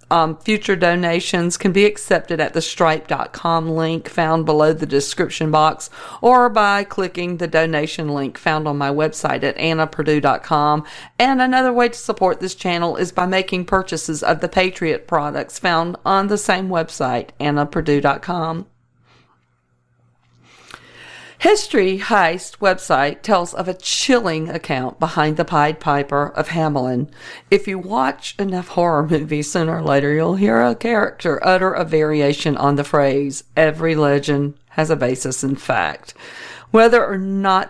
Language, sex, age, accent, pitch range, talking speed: English, female, 40-59, American, 145-185 Hz, 145 wpm